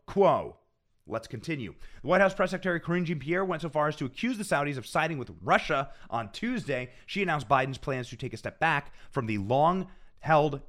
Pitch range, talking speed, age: 125-170 Hz, 200 wpm, 30-49